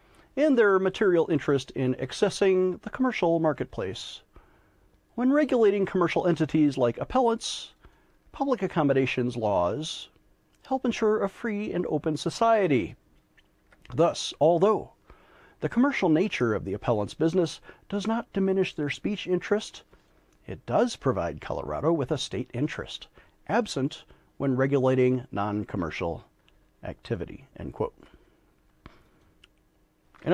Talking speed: 105 wpm